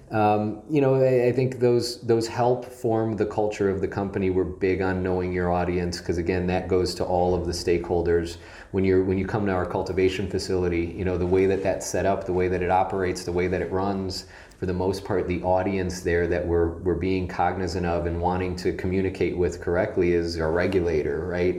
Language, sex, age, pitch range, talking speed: English, male, 30-49, 85-95 Hz, 220 wpm